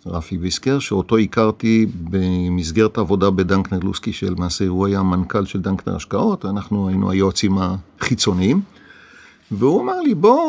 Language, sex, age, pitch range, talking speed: Hebrew, male, 50-69, 100-140 Hz, 130 wpm